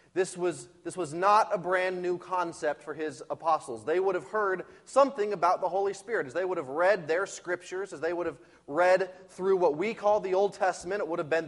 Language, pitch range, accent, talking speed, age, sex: English, 165-200 Hz, American, 230 wpm, 30-49, male